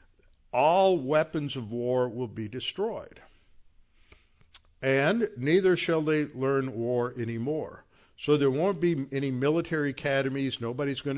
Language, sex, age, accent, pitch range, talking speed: English, male, 50-69, American, 115-135 Hz, 125 wpm